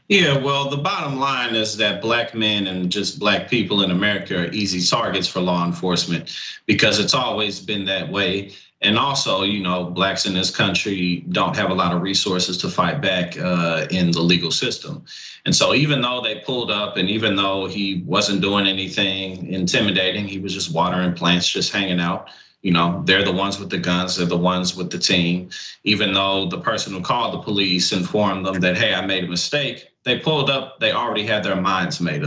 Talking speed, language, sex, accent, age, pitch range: 205 wpm, English, male, American, 30-49, 90-120 Hz